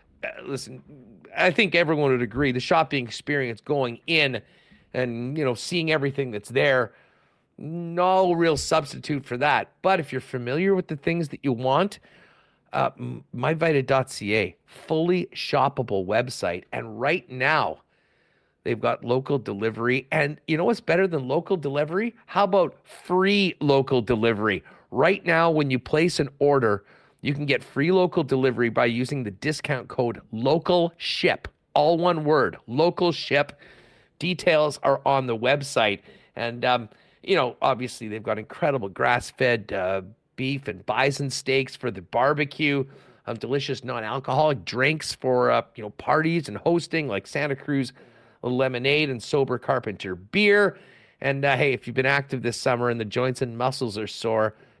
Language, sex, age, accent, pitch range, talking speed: English, male, 40-59, American, 125-160 Hz, 150 wpm